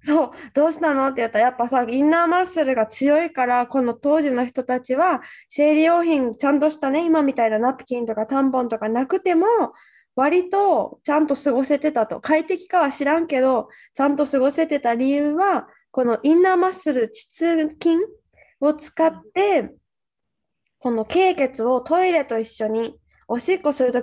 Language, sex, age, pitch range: Japanese, female, 20-39, 240-335 Hz